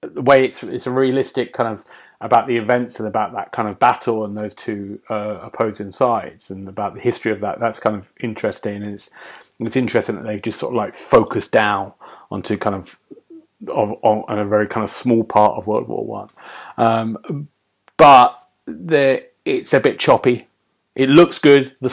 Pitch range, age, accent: 105-135 Hz, 30-49, British